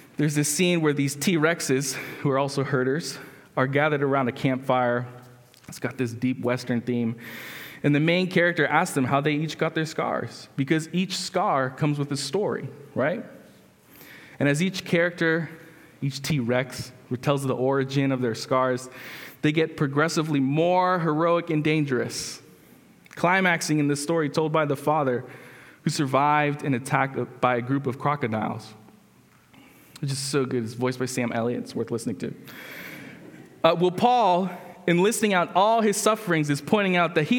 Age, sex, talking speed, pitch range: 20-39, male, 165 wpm, 135-180 Hz